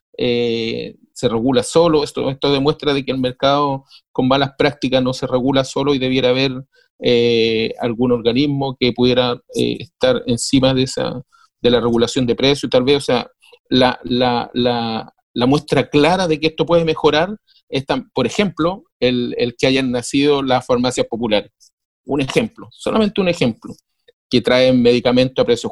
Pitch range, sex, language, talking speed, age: 130-195 Hz, male, Spanish, 170 wpm, 40-59